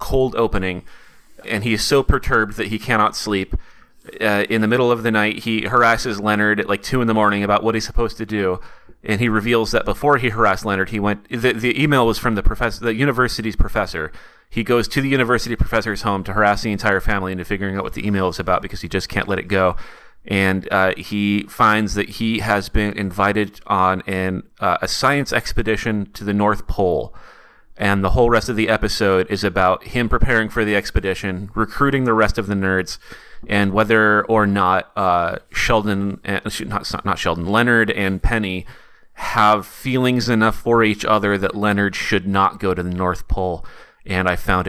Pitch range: 100-115 Hz